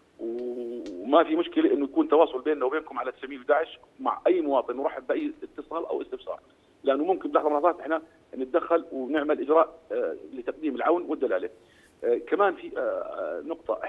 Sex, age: male, 40-59